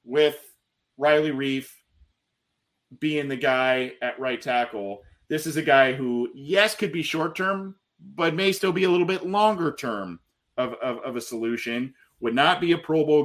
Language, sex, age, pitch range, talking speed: English, male, 30-49, 115-145 Hz, 170 wpm